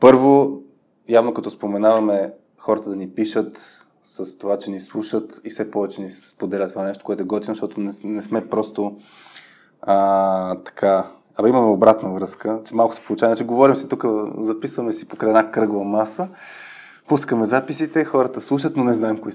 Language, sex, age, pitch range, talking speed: Bulgarian, male, 20-39, 100-115 Hz, 170 wpm